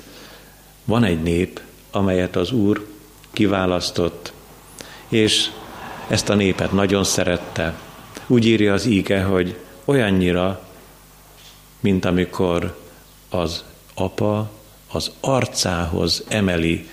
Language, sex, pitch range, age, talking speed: Hungarian, male, 85-110 Hz, 50-69, 90 wpm